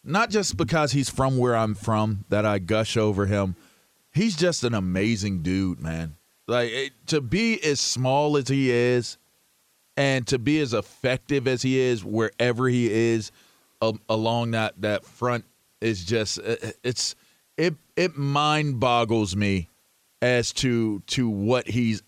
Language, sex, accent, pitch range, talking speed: English, male, American, 110-140 Hz, 160 wpm